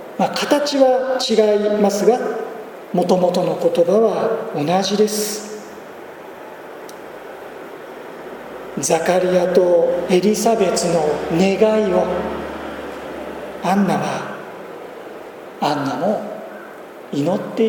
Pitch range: 180-220 Hz